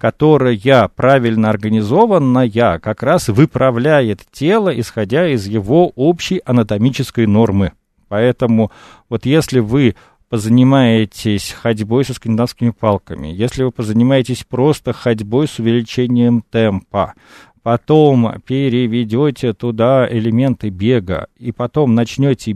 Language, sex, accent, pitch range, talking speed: Russian, male, native, 110-145 Hz, 100 wpm